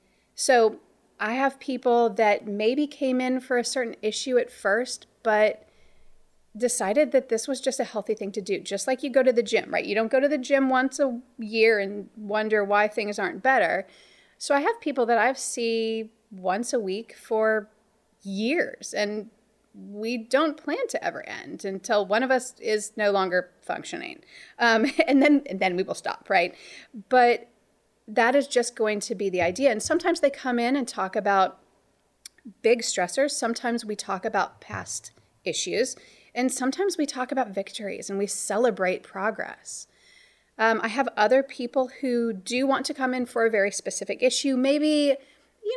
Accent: American